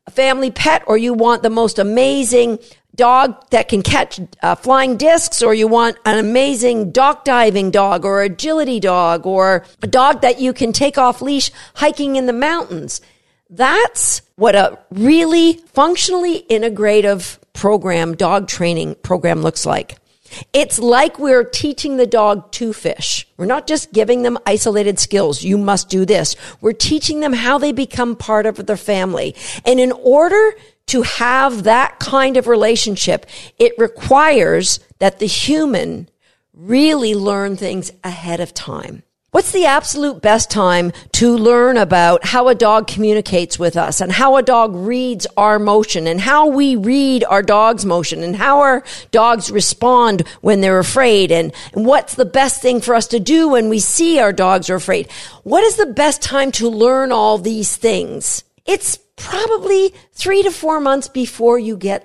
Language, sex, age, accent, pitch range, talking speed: English, female, 50-69, American, 205-275 Hz, 165 wpm